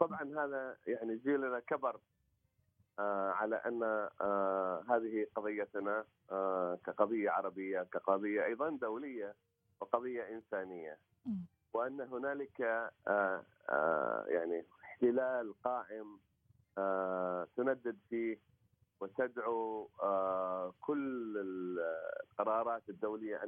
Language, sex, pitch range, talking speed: Arabic, male, 95-125 Hz, 85 wpm